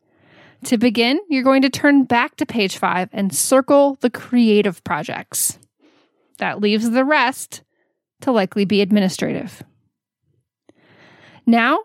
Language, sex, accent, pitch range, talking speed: English, female, American, 215-285 Hz, 120 wpm